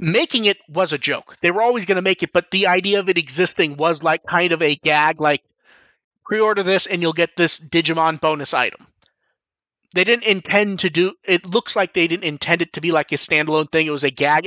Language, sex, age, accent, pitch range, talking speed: English, male, 30-49, American, 155-185 Hz, 230 wpm